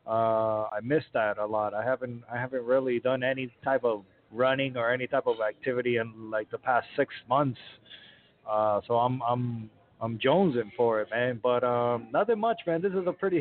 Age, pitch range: 20-39, 120-155 Hz